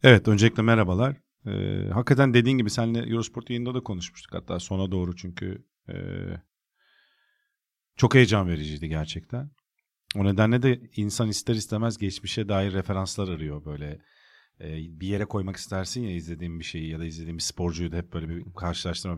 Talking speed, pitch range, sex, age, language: 160 wpm, 95-130 Hz, male, 50-69, Turkish